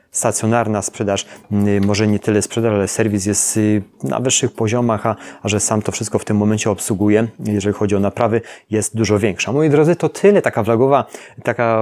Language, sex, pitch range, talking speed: Polish, male, 100-125 Hz, 185 wpm